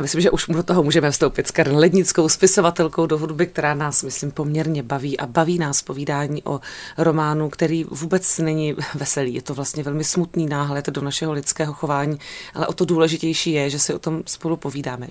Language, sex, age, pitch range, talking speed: Czech, female, 30-49, 145-180 Hz, 200 wpm